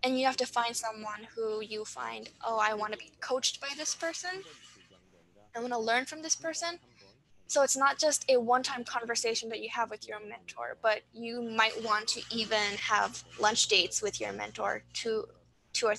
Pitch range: 210-260 Hz